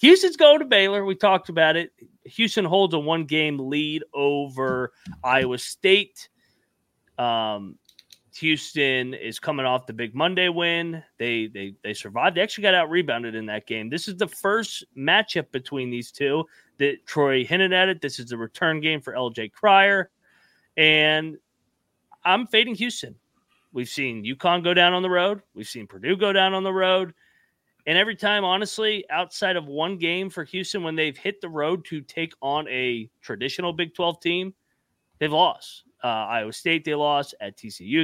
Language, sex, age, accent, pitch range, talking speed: English, male, 30-49, American, 130-185 Hz, 170 wpm